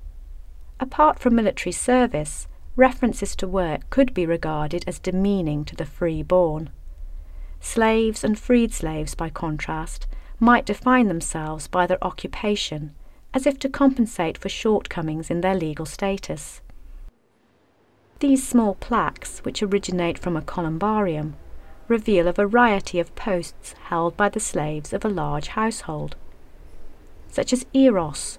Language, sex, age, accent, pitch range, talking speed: English, female, 40-59, British, 155-220 Hz, 130 wpm